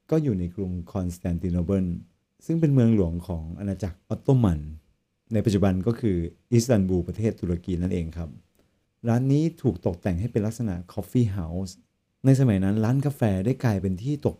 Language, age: Thai, 30-49